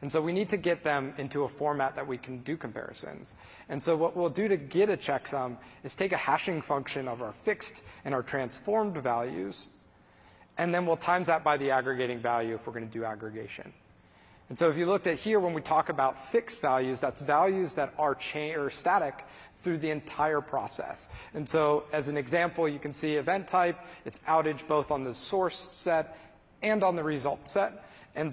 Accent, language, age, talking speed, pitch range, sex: American, English, 30-49, 210 wpm, 135-170 Hz, male